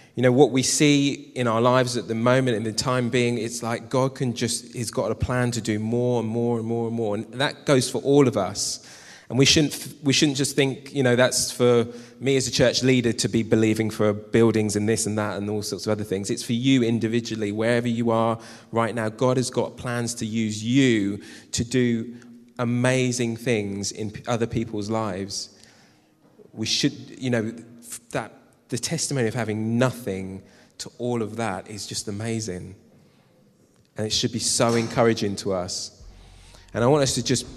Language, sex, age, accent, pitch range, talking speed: English, male, 20-39, British, 105-125 Hz, 200 wpm